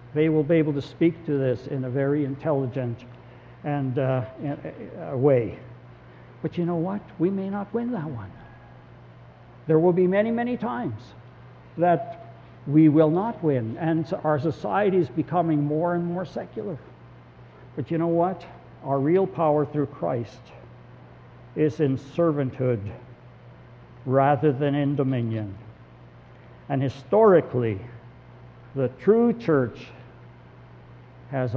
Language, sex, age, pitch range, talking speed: English, male, 60-79, 110-155 Hz, 135 wpm